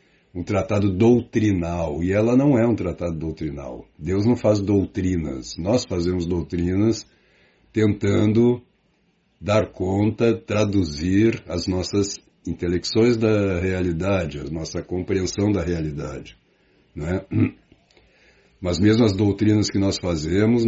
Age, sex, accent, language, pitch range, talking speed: 60-79, male, Brazilian, Portuguese, 90-110 Hz, 115 wpm